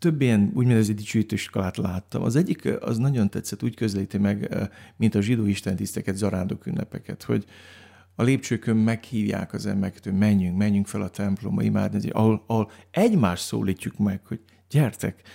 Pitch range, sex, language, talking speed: 100-120 Hz, male, Hungarian, 150 wpm